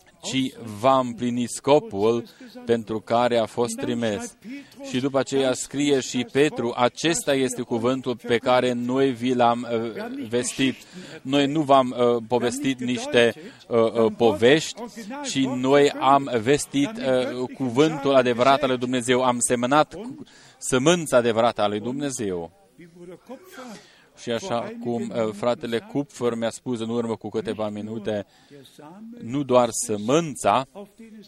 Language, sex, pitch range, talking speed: Romanian, male, 120-155 Hz, 115 wpm